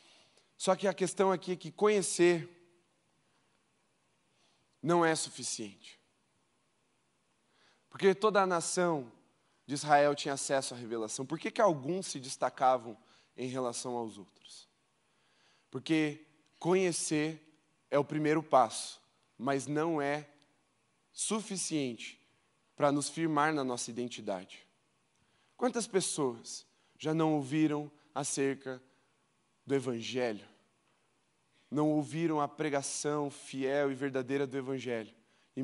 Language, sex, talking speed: Portuguese, male, 110 wpm